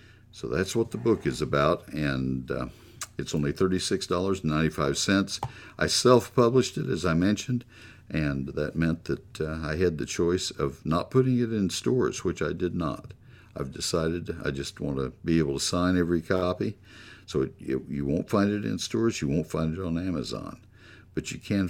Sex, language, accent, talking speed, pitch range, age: male, English, American, 185 wpm, 80-110 Hz, 60-79